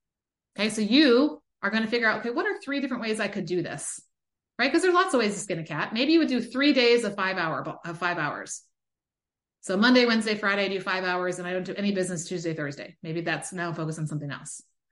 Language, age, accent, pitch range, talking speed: English, 30-49, American, 190-240 Hz, 245 wpm